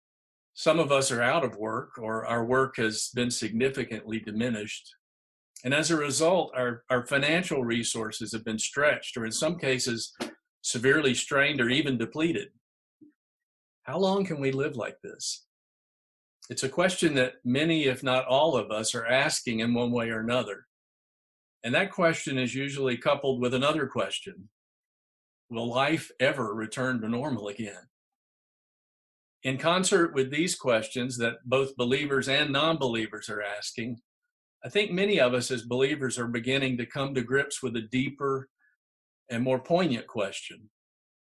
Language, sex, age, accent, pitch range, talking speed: English, male, 50-69, American, 115-140 Hz, 155 wpm